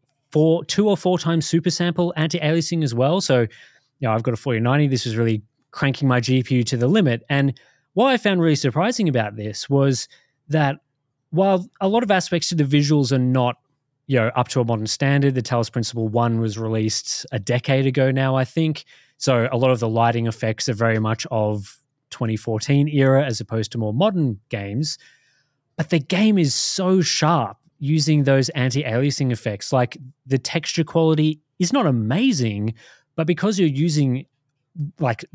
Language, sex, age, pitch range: English, male, 20-39, 115-155 Hz